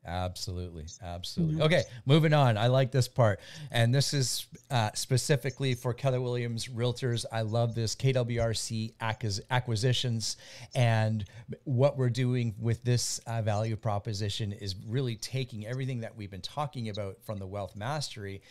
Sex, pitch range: male, 105-125 Hz